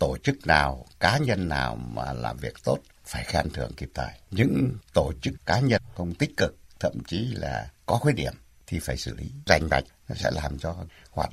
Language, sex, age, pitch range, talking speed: Vietnamese, male, 60-79, 70-100 Hz, 210 wpm